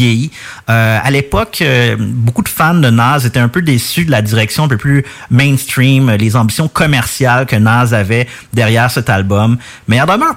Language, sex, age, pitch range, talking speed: English, male, 30-49, 110-135 Hz, 195 wpm